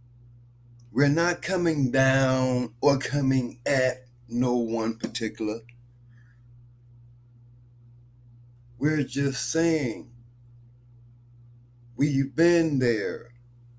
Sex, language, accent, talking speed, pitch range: male, English, American, 70 wpm, 120-140 Hz